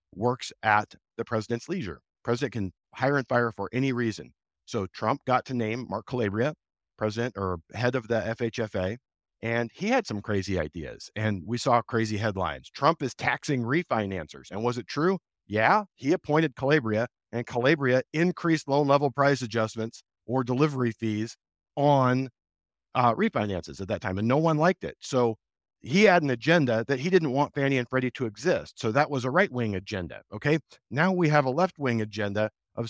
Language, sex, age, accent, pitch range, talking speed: English, male, 50-69, American, 110-145 Hz, 180 wpm